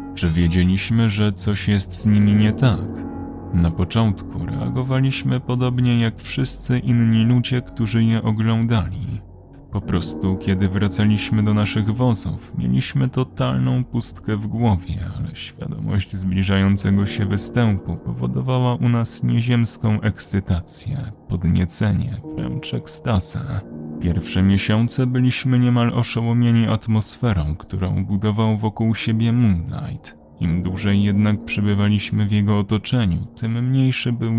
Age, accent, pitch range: 20-39, native, 95-120 Hz